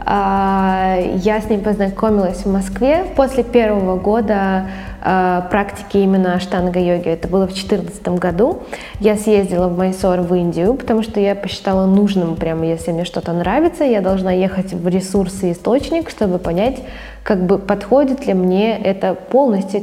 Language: Russian